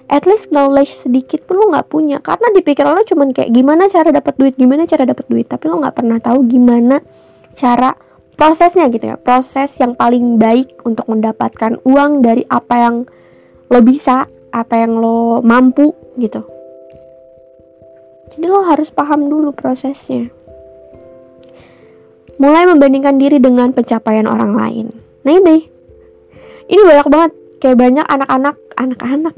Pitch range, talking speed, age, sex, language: 230-305 Hz, 145 wpm, 20-39, female, Indonesian